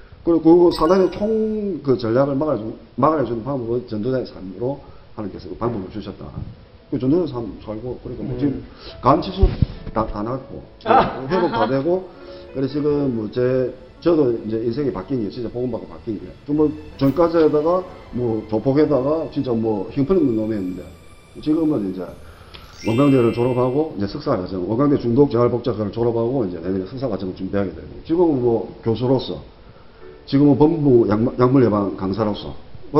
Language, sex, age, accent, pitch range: Korean, male, 40-59, native, 100-145 Hz